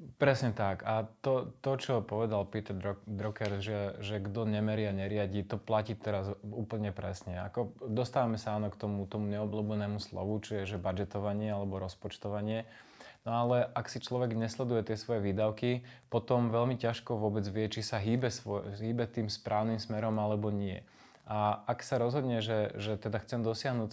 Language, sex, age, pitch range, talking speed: Slovak, male, 20-39, 105-120 Hz, 165 wpm